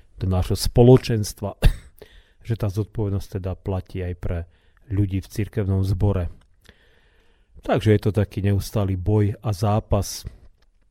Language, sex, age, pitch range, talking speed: Slovak, male, 40-59, 90-105 Hz, 120 wpm